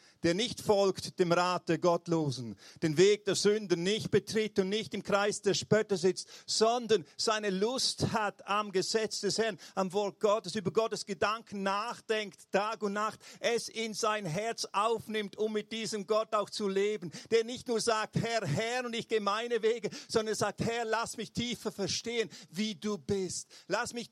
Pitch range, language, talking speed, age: 180-220 Hz, German, 180 wpm, 50-69